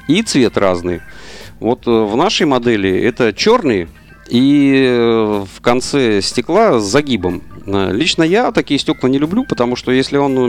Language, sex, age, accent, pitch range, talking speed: Russian, male, 40-59, native, 95-130 Hz, 150 wpm